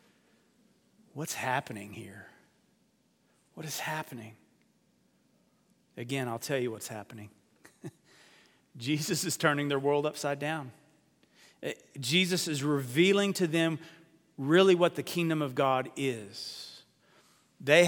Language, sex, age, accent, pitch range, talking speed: English, male, 40-59, American, 130-160 Hz, 105 wpm